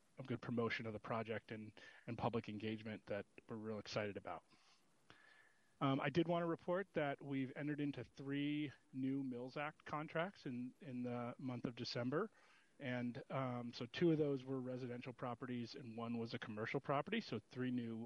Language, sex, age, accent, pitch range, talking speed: English, male, 30-49, American, 120-145 Hz, 180 wpm